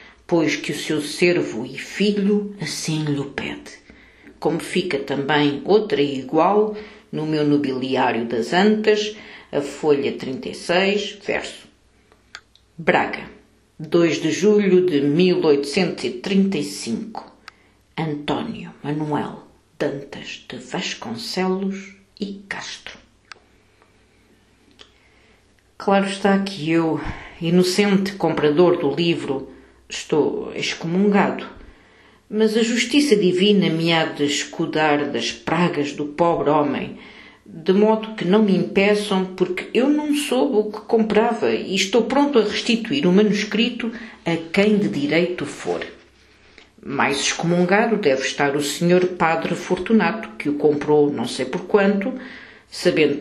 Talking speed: 115 wpm